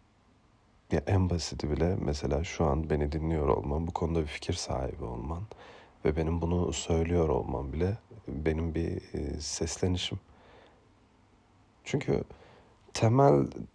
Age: 40-59